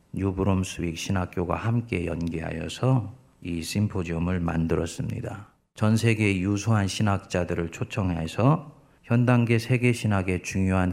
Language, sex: Korean, male